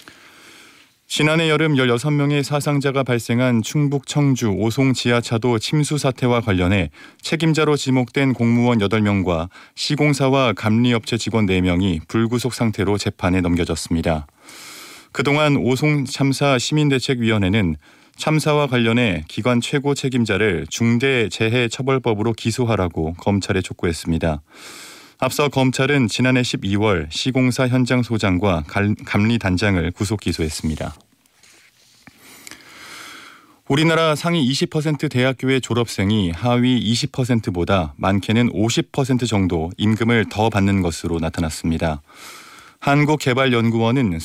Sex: male